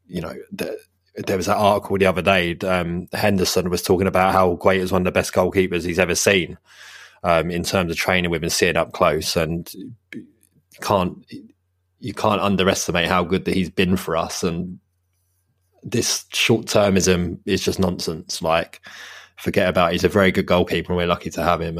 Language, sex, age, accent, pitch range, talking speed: English, male, 20-39, British, 90-100 Hz, 195 wpm